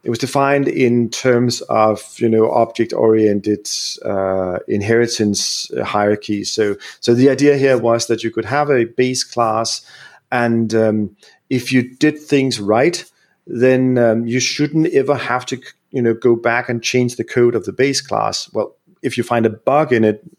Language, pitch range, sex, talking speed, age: English, 110-130 Hz, male, 175 wpm, 40-59